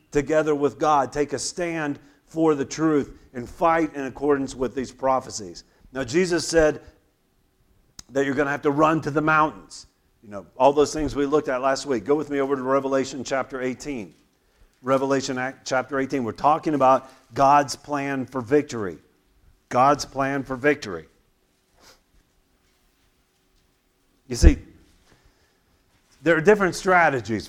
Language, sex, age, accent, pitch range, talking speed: English, male, 50-69, American, 130-155 Hz, 145 wpm